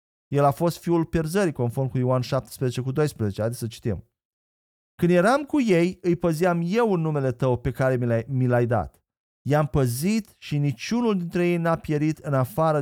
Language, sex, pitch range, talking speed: Romanian, male, 130-180 Hz, 180 wpm